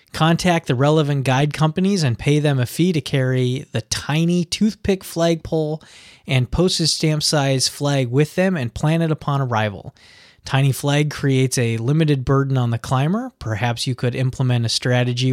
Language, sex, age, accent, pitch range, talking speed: English, male, 20-39, American, 120-150 Hz, 170 wpm